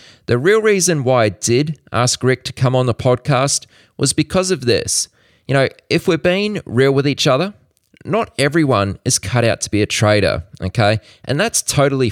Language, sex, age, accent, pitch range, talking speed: English, male, 20-39, Australian, 105-145 Hz, 195 wpm